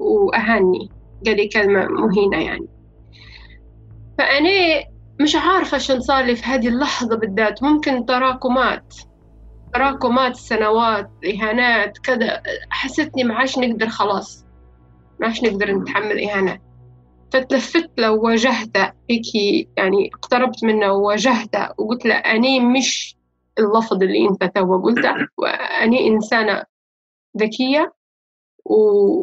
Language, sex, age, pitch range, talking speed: Arabic, female, 20-39, 185-250 Hz, 100 wpm